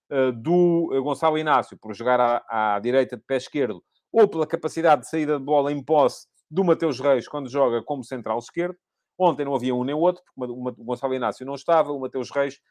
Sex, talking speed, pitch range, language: male, 205 wpm, 120-150 Hz, English